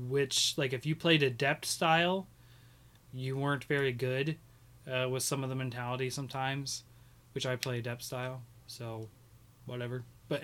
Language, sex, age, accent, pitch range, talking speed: English, male, 20-39, American, 125-155 Hz, 155 wpm